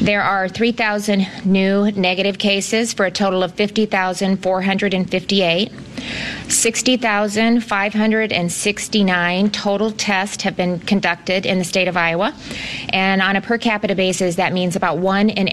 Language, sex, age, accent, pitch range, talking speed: English, female, 30-49, American, 180-205 Hz, 130 wpm